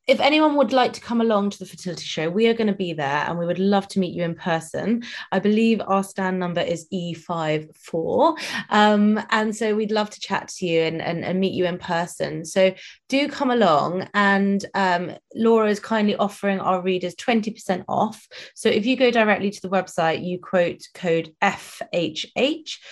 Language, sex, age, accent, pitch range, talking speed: English, female, 20-39, British, 170-210 Hz, 195 wpm